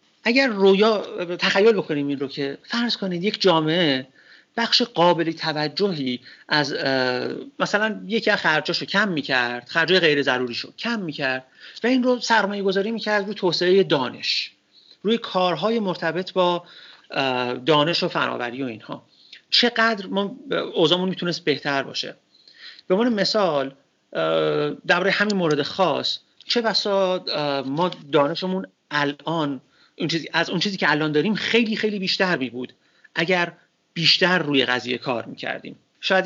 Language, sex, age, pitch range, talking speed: Persian, male, 40-59, 145-195 Hz, 130 wpm